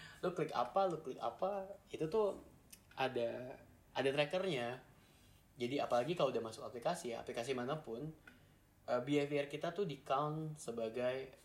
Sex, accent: male, native